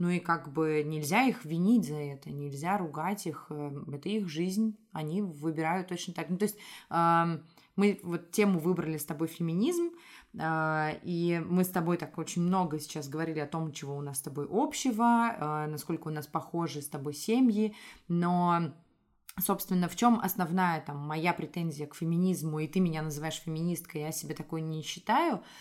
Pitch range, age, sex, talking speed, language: 155-190 Hz, 20-39, female, 170 wpm, Russian